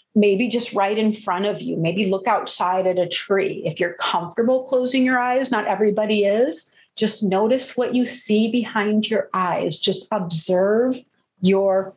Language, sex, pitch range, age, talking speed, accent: English, female, 175-220 Hz, 40-59, 165 wpm, American